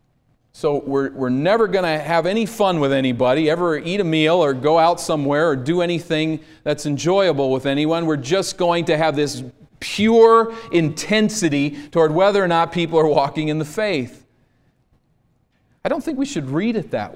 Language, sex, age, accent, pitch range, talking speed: English, male, 40-59, American, 120-155 Hz, 180 wpm